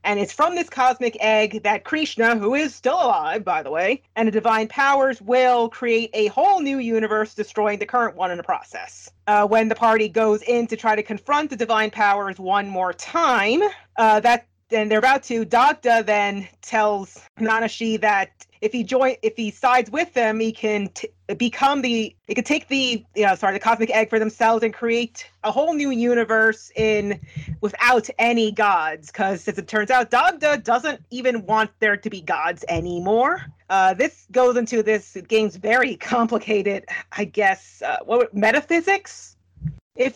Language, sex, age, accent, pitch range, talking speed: English, female, 30-49, American, 205-245 Hz, 180 wpm